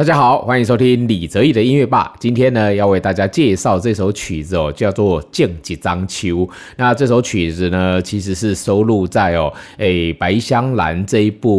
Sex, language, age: male, Chinese, 30-49